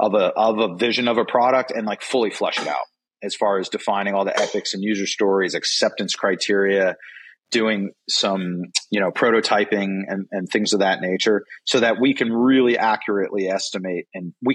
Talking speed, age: 190 wpm, 30-49